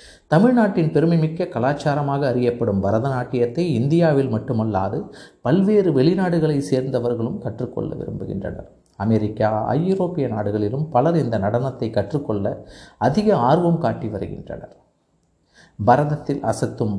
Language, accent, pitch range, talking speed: Tamil, native, 105-140 Hz, 90 wpm